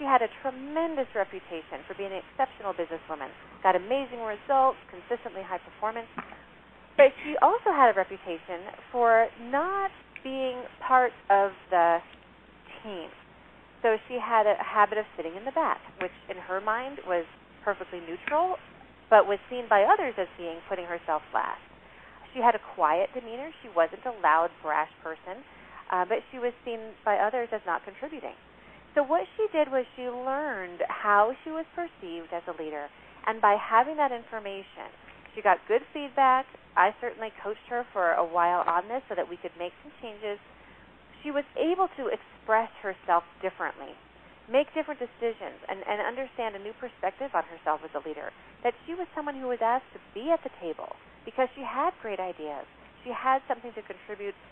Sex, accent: female, American